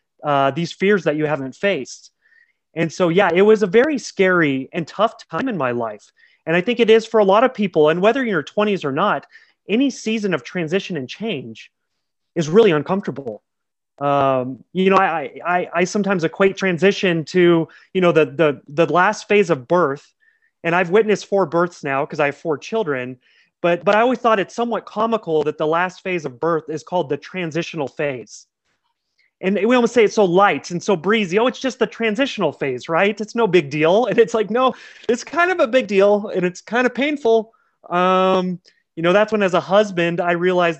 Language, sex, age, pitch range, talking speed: English, male, 30-49, 165-215 Hz, 210 wpm